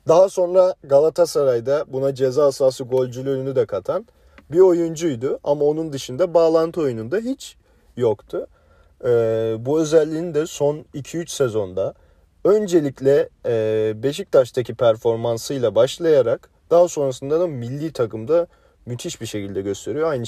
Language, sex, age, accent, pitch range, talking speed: Turkish, male, 40-59, native, 115-165 Hz, 120 wpm